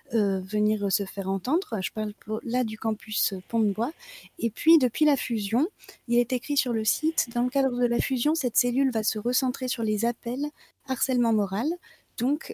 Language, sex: French, female